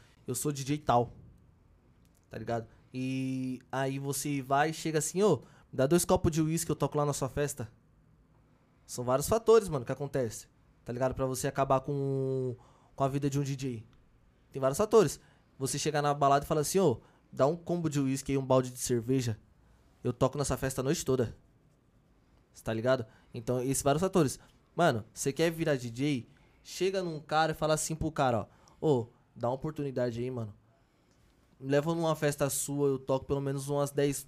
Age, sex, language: 20-39, male, Portuguese